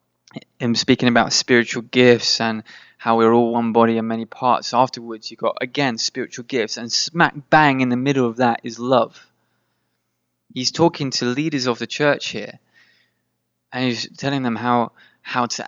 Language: English